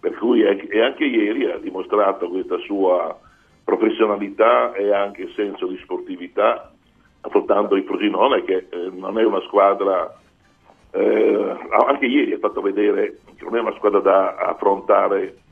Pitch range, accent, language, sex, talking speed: 295-430 Hz, native, Italian, male, 145 wpm